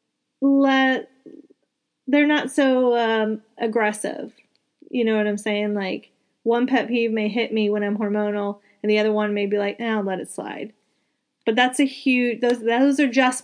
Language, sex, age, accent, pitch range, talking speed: English, female, 30-49, American, 210-250 Hz, 185 wpm